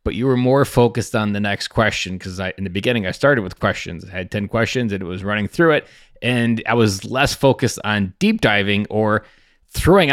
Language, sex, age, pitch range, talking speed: English, male, 20-39, 100-125 Hz, 225 wpm